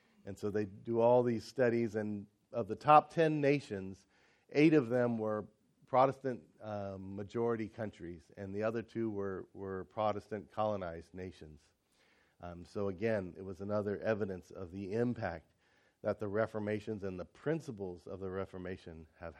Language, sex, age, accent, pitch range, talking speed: English, male, 40-59, American, 100-125 Hz, 150 wpm